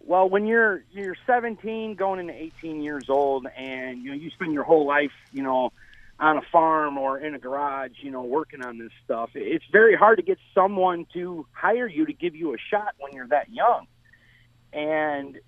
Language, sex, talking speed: English, male, 200 wpm